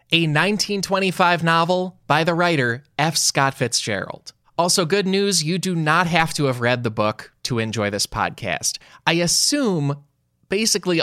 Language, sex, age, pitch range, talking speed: English, male, 20-39, 120-165 Hz, 150 wpm